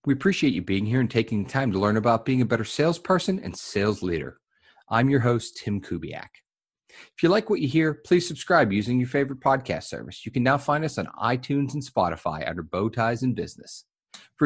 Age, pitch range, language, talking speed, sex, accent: 40-59, 110-165 Hz, English, 210 wpm, male, American